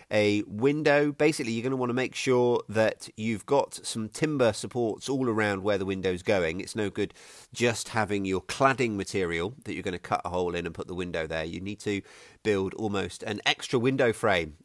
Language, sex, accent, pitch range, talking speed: English, male, British, 105-135 Hz, 215 wpm